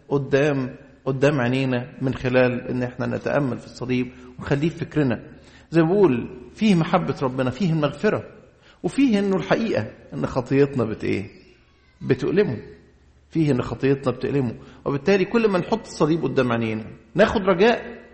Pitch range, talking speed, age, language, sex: 120-165 Hz, 130 wpm, 50-69, English, male